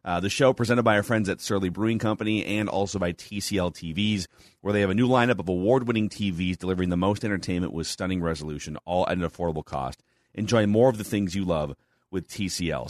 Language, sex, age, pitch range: English, male, 30-49, 90-120 Hz